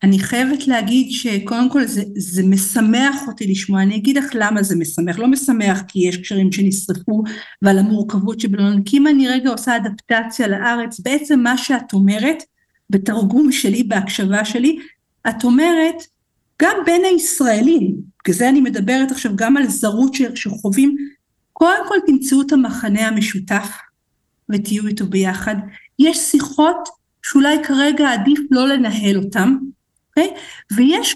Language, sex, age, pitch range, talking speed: Hebrew, female, 50-69, 205-280 Hz, 135 wpm